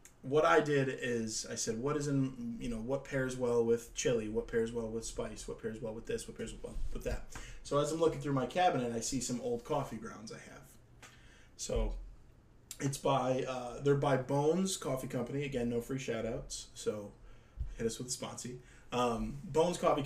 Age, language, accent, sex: 20-39, English, American, male